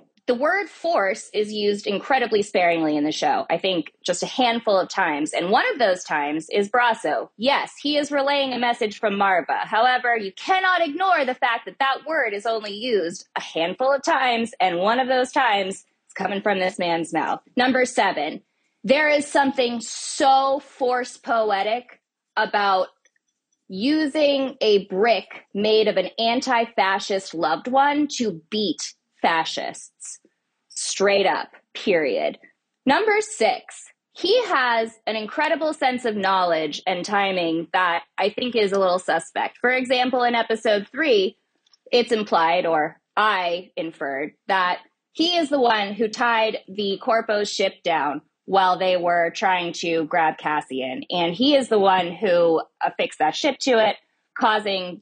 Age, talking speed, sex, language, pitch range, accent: 20-39, 155 wpm, female, English, 185-265 Hz, American